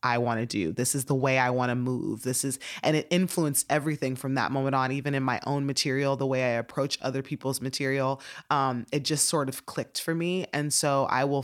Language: English